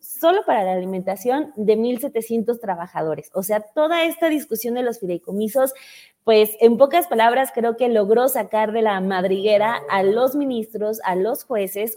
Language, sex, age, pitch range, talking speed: Spanish, female, 20-39, 200-245 Hz, 160 wpm